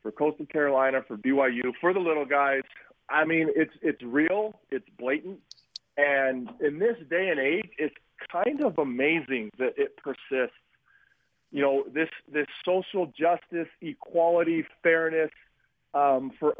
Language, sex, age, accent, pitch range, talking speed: English, male, 40-59, American, 135-175 Hz, 140 wpm